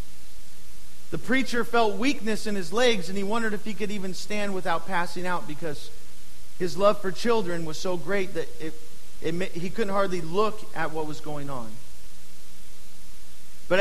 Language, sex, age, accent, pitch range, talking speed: English, male, 40-59, American, 160-215 Hz, 170 wpm